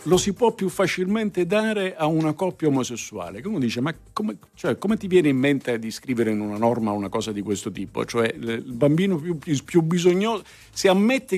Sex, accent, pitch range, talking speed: male, native, 110-165 Hz, 205 wpm